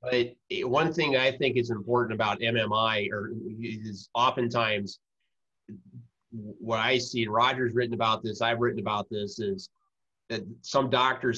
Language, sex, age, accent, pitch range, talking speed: English, male, 30-49, American, 105-120 Hz, 150 wpm